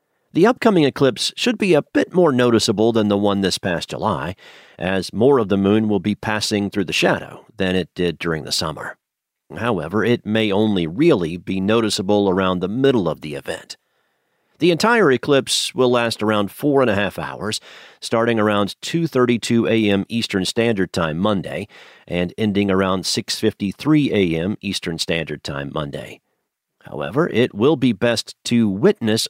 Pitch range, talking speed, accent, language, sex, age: 95-120 Hz, 170 wpm, American, English, male, 40-59